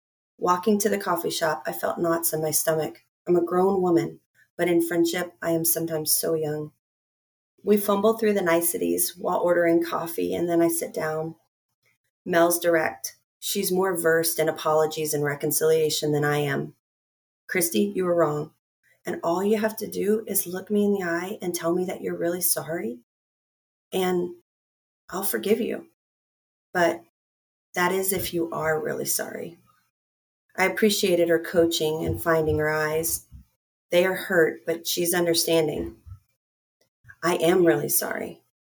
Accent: American